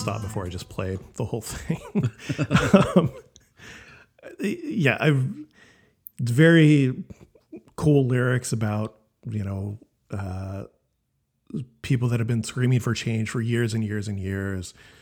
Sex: male